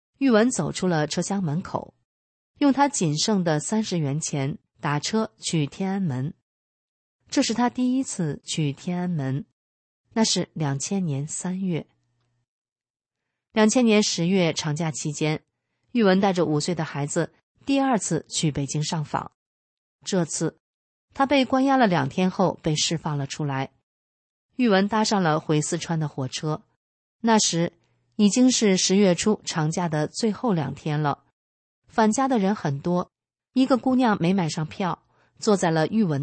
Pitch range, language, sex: 150-215 Hz, Chinese, female